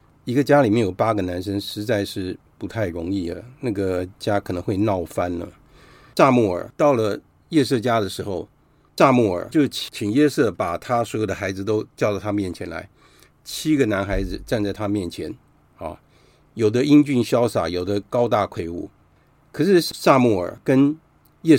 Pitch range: 100-140 Hz